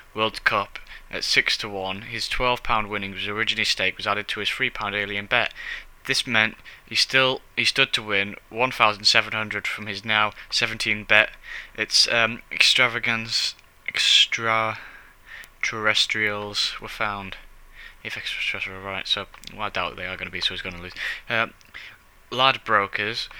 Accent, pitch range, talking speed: British, 100-110 Hz, 165 wpm